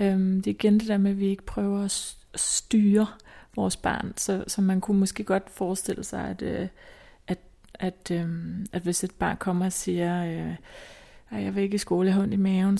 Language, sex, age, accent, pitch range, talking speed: Danish, female, 30-49, native, 185-215 Hz, 190 wpm